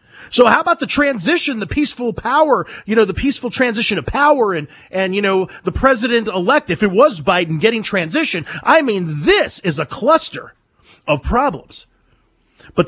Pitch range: 155-220 Hz